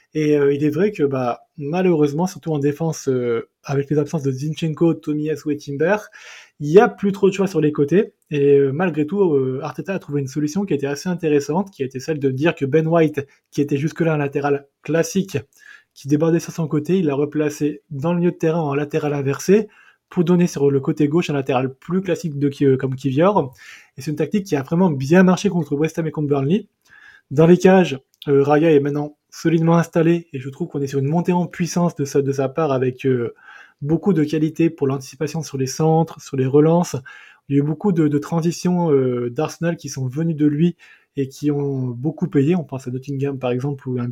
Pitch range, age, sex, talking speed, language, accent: 140-170 Hz, 20-39, male, 235 wpm, French, French